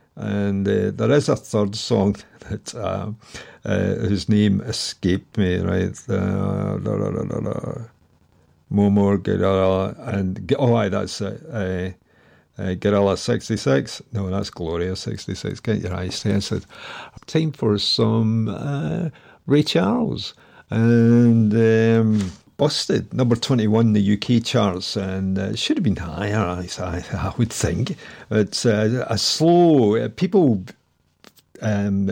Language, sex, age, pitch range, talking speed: English, male, 50-69, 95-115 Hz, 130 wpm